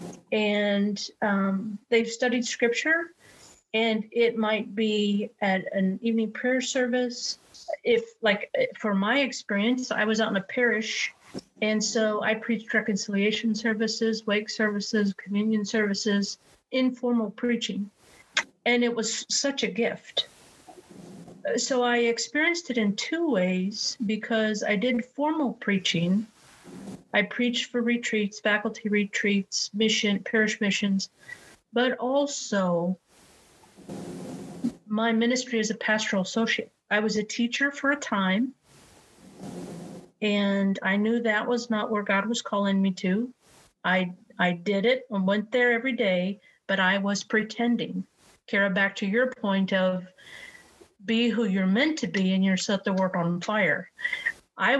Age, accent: 50-69, American